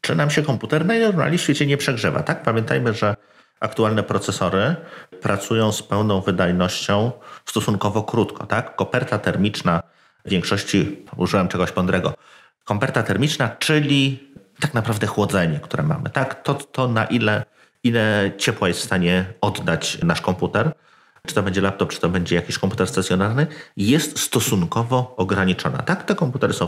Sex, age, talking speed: male, 30-49, 150 wpm